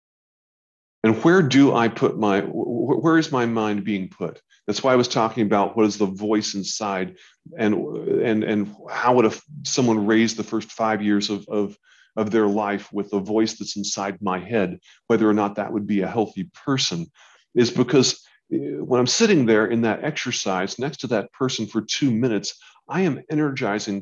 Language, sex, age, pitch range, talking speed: English, male, 40-59, 100-120 Hz, 185 wpm